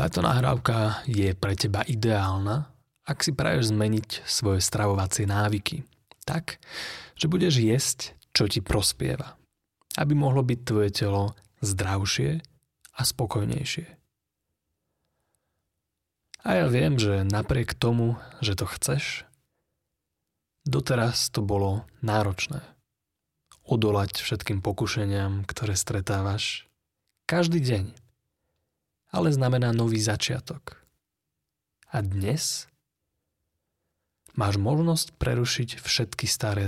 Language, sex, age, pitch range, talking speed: Slovak, male, 30-49, 100-130 Hz, 95 wpm